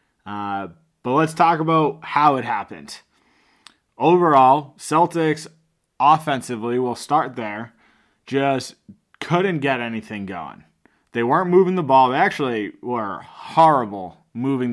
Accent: American